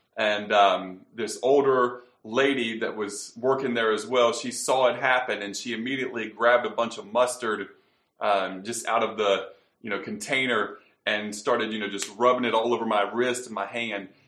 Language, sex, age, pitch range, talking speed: English, male, 30-49, 100-120 Hz, 190 wpm